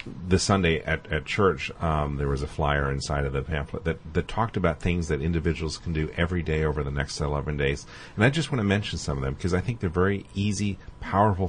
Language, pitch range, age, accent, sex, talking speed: English, 75-95 Hz, 40-59, American, male, 240 wpm